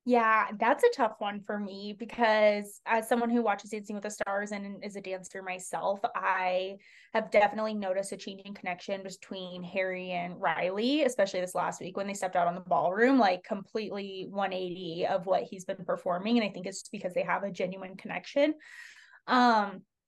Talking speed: 190 wpm